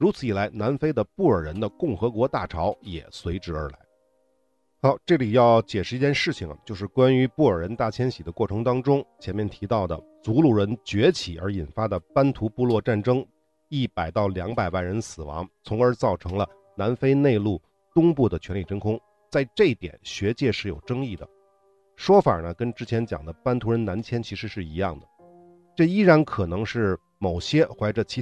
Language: Chinese